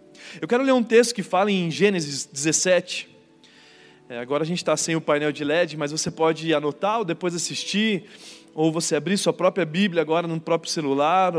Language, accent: Portuguese, Brazilian